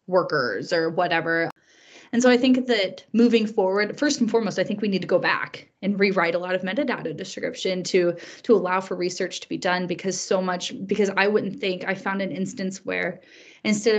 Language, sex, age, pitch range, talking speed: English, female, 20-39, 180-235 Hz, 205 wpm